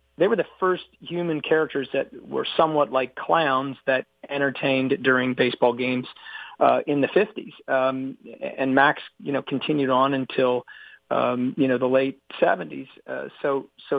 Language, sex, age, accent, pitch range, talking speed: English, male, 40-59, American, 130-150 Hz, 160 wpm